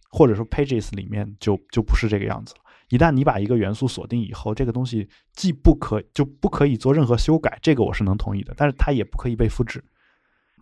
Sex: male